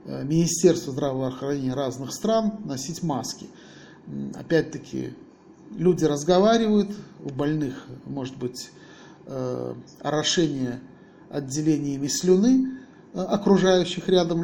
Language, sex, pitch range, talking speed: Russian, male, 140-180 Hz, 75 wpm